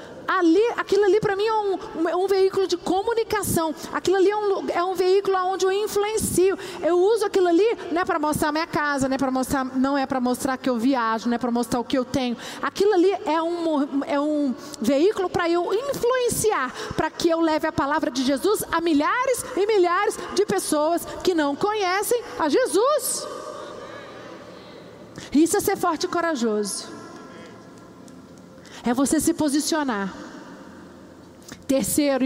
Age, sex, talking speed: 40-59, female, 165 wpm